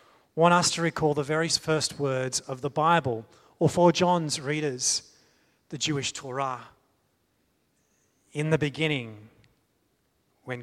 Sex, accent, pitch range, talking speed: male, Australian, 130-165 Hz, 125 wpm